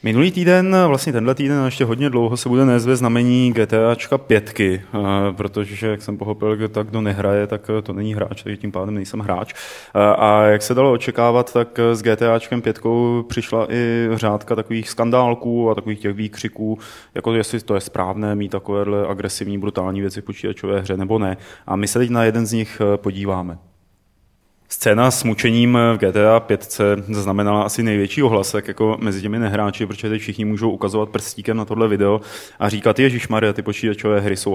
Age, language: 20-39, Czech